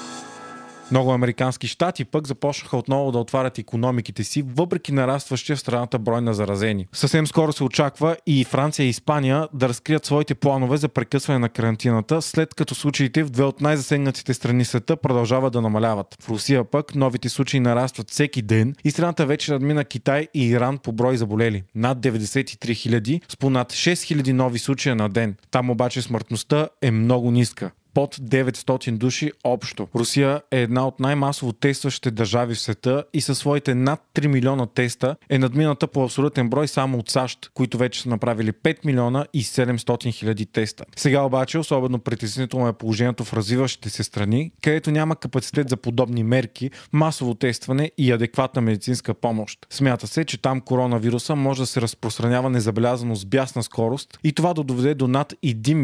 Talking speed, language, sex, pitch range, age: 175 wpm, Bulgarian, male, 120-145 Hz, 20-39